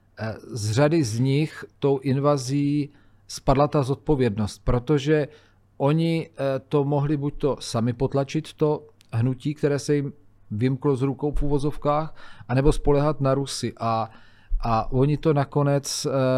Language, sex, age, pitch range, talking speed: Czech, male, 40-59, 120-145 Hz, 130 wpm